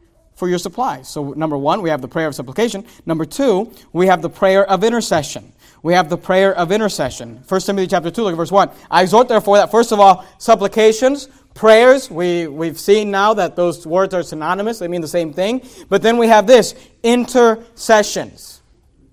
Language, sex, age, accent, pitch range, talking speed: English, male, 40-59, American, 175-220 Hz, 195 wpm